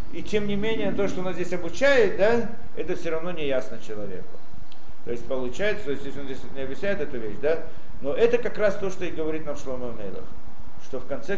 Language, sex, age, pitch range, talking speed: Russian, male, 50-69, 120-195 Hz, 230 wpm